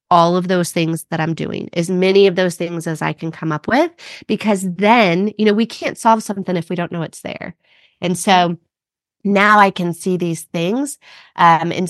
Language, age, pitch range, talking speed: English, 30-49, 175-225 Hz, 210 wpm